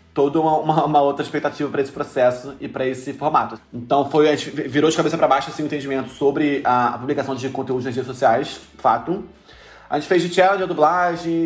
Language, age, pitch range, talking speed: Portuguese, 20-39, 125-150 Hz, 230 wpm